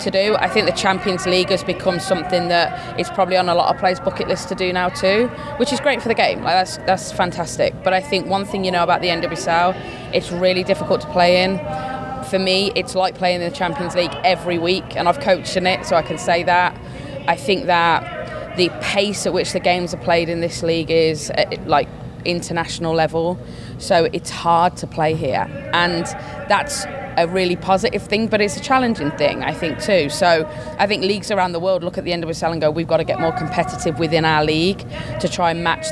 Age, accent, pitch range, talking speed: 20-39, British, 155-185 Hz, 230 wpm